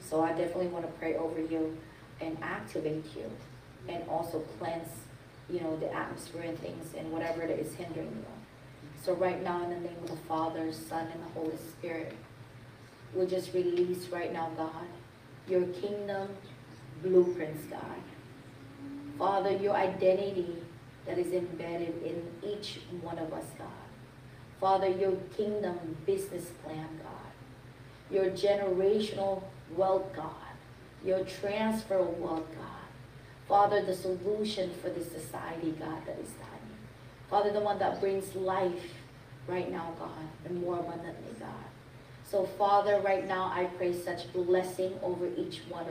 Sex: female